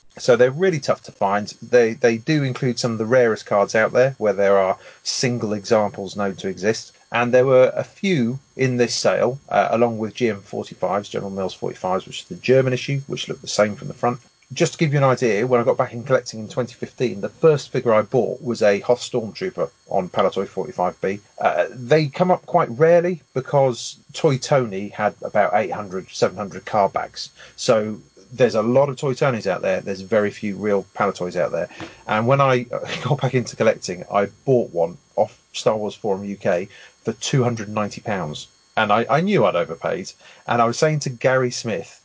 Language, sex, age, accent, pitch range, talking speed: English, male, 40-59, British, 105-135 Hz, 200 wpm